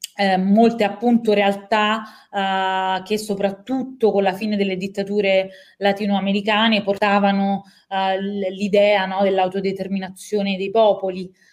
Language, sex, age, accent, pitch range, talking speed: Italian, female, 20-39, native, 190-220 Hz, 105 wpm